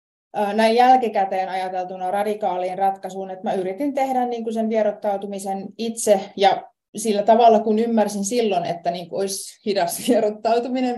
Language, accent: Finnish, native